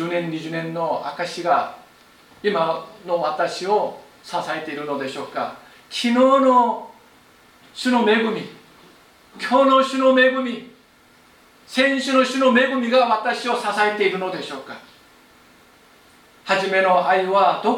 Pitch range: 150-225 Hz